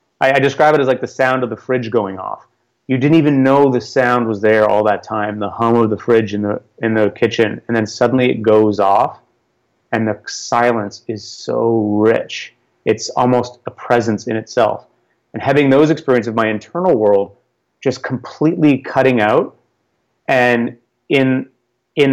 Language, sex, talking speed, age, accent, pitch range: English, male, 175 wpm, 30-49, American, 115-135 Hz